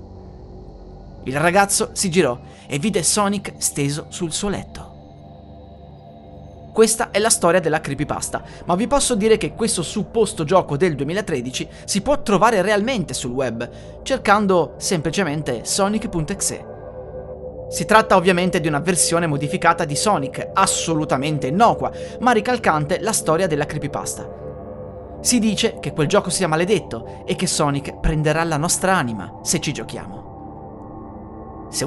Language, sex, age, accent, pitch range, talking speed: Italian, male, 30-49, native, 125-200 Hz, 135 wpm